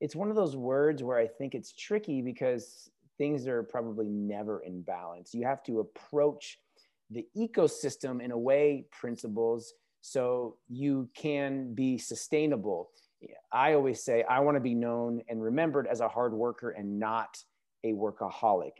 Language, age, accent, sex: English, 30-49, American, male